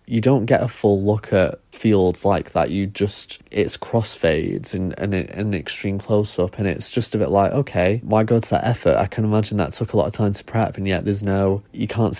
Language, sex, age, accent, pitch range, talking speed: English, male, 20-39, British, 95-110 Hz, 235 wpm